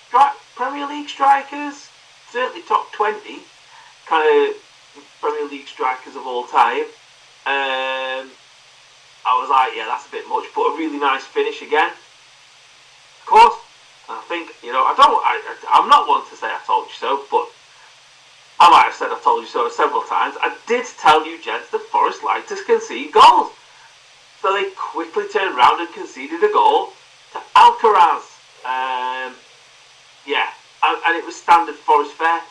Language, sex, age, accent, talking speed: English, male, 30-49, British, 165 wpm